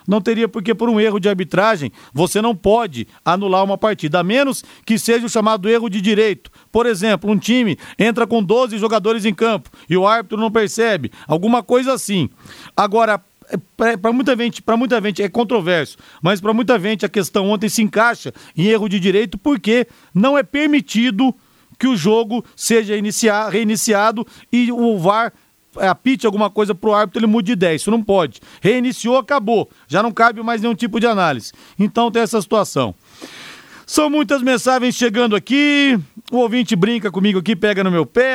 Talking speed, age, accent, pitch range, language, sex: 180 wpm, 40-59, Brazilian, 200-235 Hz, Portuguese, male